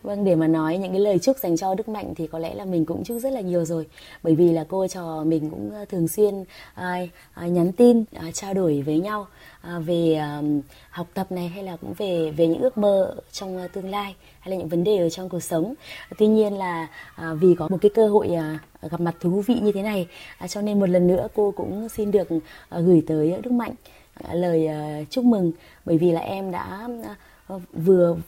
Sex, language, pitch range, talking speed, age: female, Vietnamese, 165-200 Hz, 210 wpm, 20-39